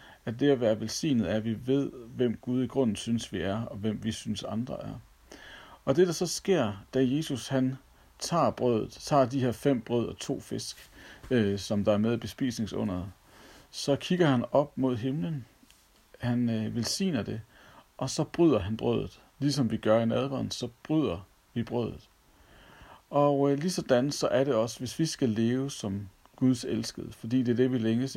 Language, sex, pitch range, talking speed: Danish, male, 110-135 Hz, 195 wpm